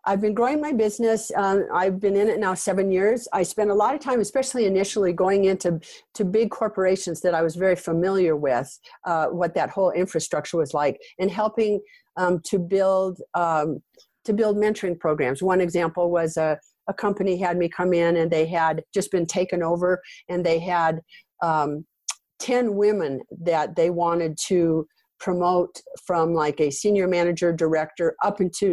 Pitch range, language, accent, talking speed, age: 165-195 Hz, English, American, 180 wpm, 50-69